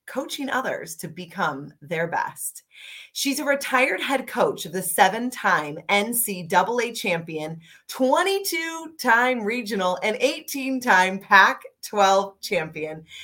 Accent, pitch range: American, 190-295 Hz